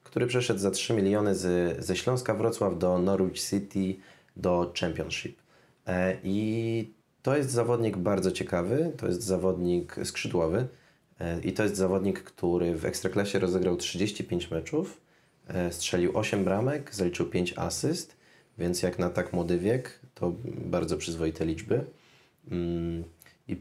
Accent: native